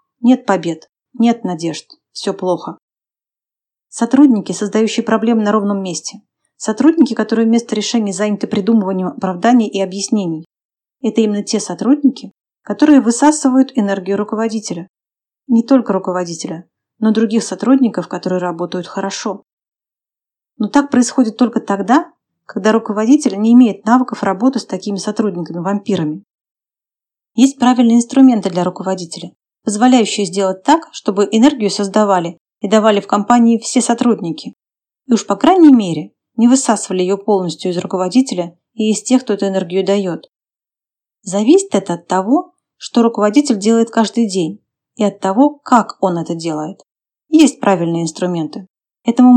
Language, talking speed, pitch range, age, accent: Russian, 130 wpm, 190-245 Hz, 30-49, native